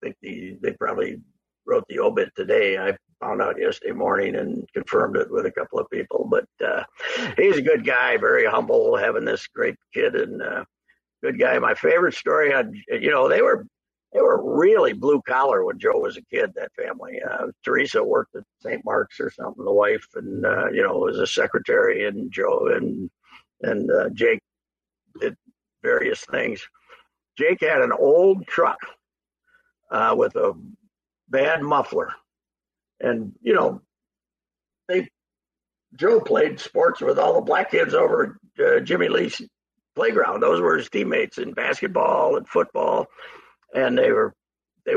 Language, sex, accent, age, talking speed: English, male, American, 60-79, 165 wpm